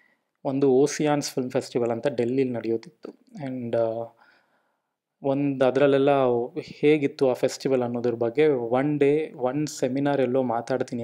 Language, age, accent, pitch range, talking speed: Kannada, 20-39, native, 120-140 Hz, 115 wpm